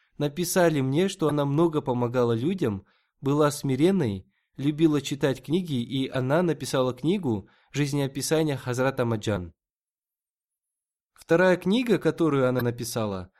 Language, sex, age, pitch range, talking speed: Russian, male, 20-39, 125-165 Hz, 105 wpm